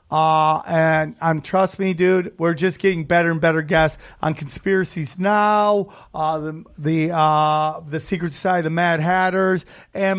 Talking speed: 165 wpm